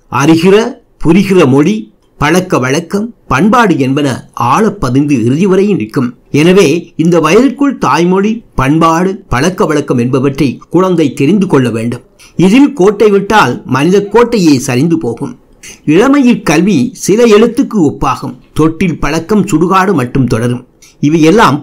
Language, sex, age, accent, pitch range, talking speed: Tamil, male, 60-79, native, 145-210 Hz, 110 wpm